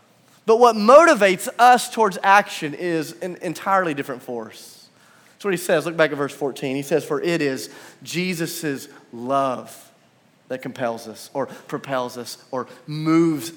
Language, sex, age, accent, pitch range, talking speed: English, male, 30-49, American, 155-230 Hz, 155 wpm